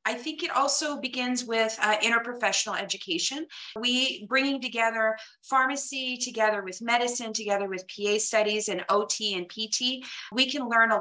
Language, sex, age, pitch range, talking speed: English, female, 30-49, 205-250 Hz, 155 wpm